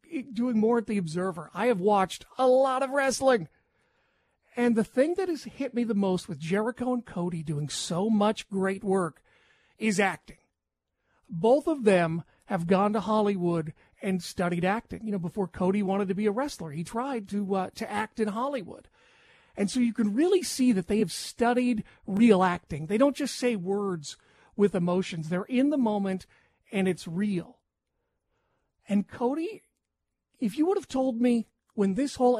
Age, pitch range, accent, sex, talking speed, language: 40-59, 185-240 Hz, American, male, 180 wpm, English